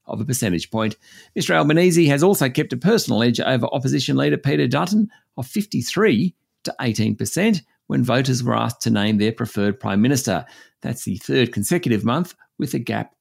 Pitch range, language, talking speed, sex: 115-165 Hz, English, 175 wpm, male